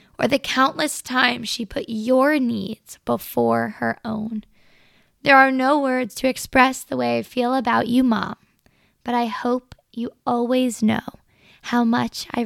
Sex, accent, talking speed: female, American, 160 wpm